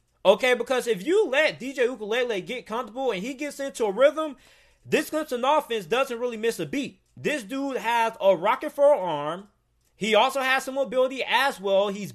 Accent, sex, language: American, male, English